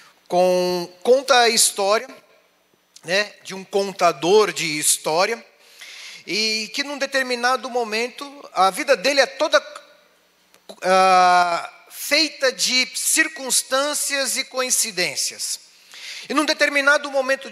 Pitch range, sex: 190-260 Hz, male